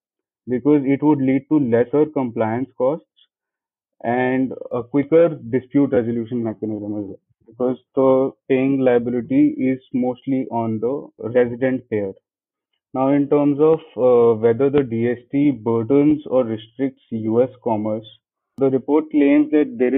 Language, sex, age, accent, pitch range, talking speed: English, male, 20-39, Indian, 115-140 Hz, 130 wpm